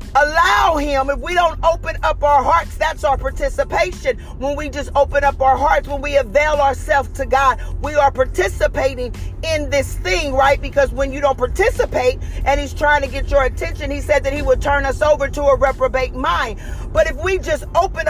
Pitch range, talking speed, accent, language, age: 280-330 Hz, 200 wpm, American, English, 40-59